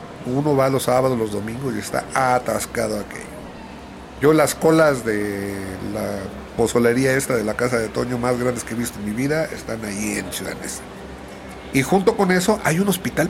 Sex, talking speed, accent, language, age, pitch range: male, 190 wpm, Mexican, Spanish, 40-59, 110-150 Hz